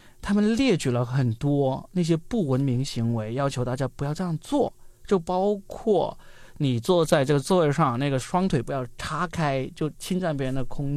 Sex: male